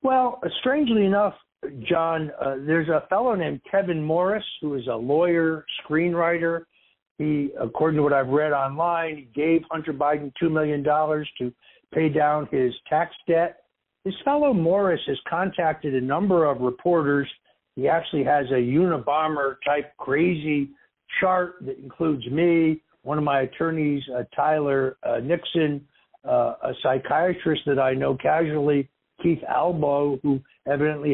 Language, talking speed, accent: English, 140 wpm, American